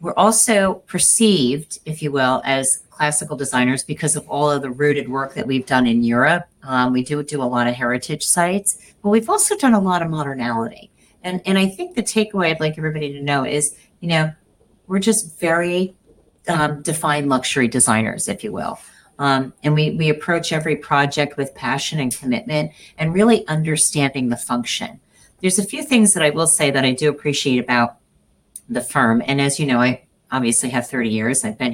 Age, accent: 40-59, American